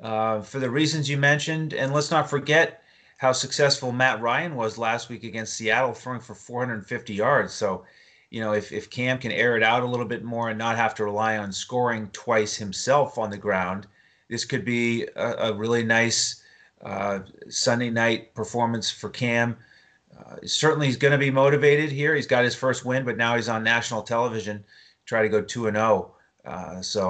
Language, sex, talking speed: English, male, 195 wpm